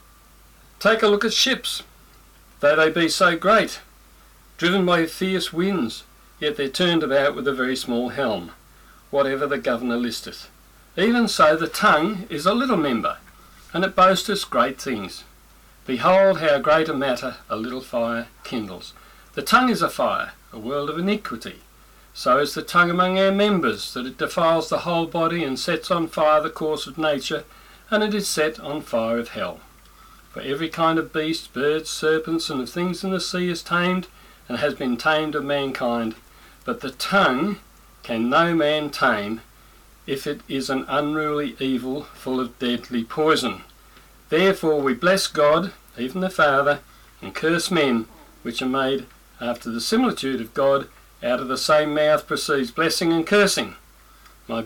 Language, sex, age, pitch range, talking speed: English, male, 50-69, 130-175 Hz, 170 wpm